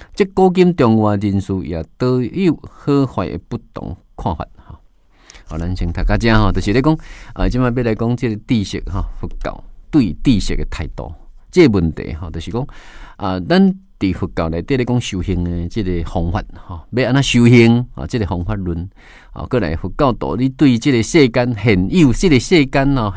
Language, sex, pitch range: Chinese, male, 95-140 Hz